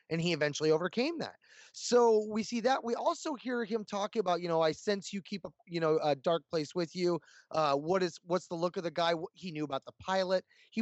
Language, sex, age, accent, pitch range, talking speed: English, male, 20-39, American, 160-205 Hz, 245 wpm